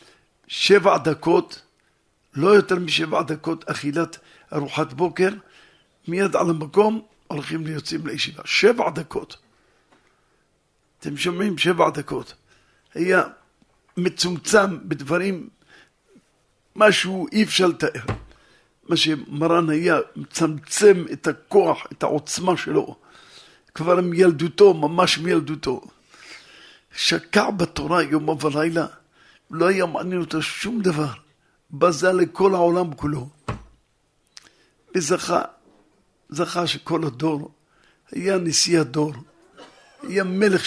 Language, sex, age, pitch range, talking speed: Hebrew, male, 50-69, 155-185 Hz, 95 wpm